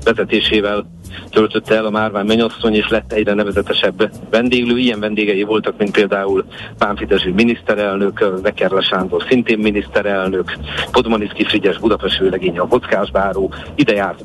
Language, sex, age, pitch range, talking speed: Hungarian, male, 50-69, 100-115 Hz, 120 wpm